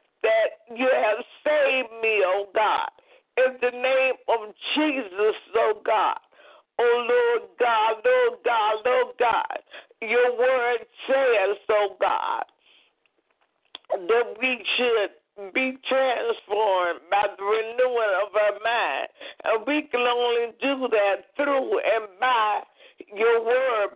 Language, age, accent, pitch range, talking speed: English, 50-69, American, 225-305 Hz, 120 wpm